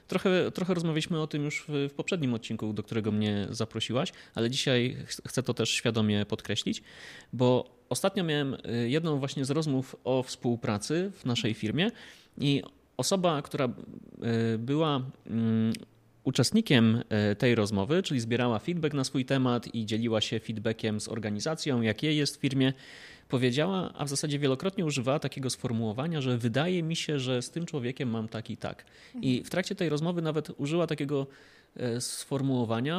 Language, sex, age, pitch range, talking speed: Polish, male, 30-49, 115-150 Hz, 155 wpm